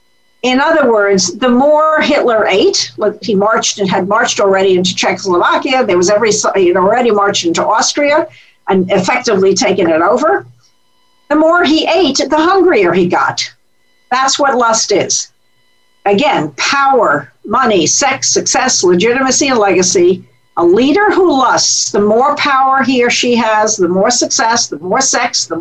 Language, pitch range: English, 200-275 Hz